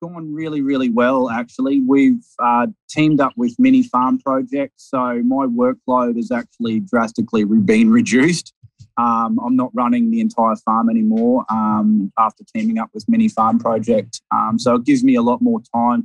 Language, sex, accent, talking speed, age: English, male, Australian, 170 wpm, 20-39